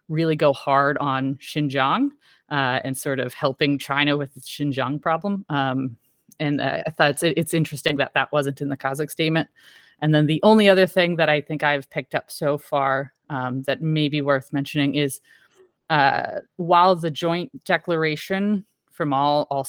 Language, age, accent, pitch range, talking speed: English, 30-49, American, 140-170 Hz, 180 wpm